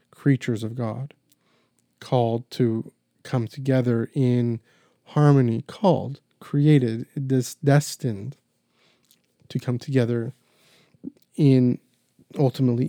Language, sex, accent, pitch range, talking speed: English, male, American, 115-140 Hz, 85 wpm